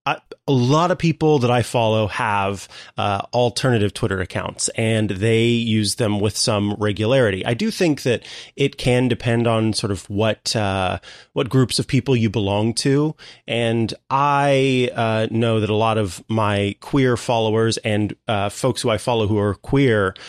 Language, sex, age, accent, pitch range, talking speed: English, male, 30-49, American, 110-140 Hz, 170 wpm